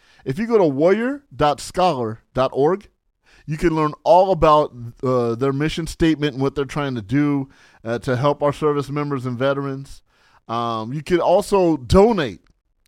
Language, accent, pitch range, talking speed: English, American, 130-170 Hz, 155 wpm